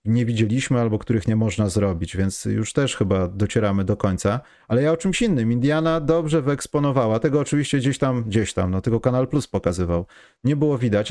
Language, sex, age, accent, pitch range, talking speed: Polish, male, 30-49, native, 110-155 Hz, 195 wpm